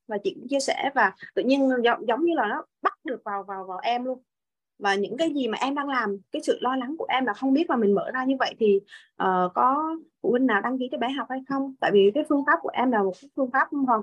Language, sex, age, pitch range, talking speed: Vietnamese, female, 20-39, 215-295 Hz, 285 wpm